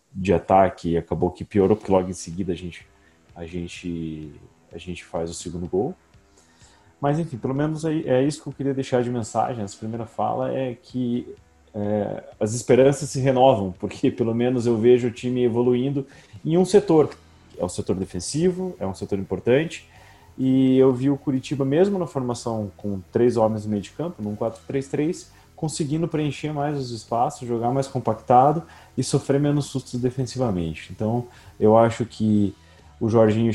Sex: male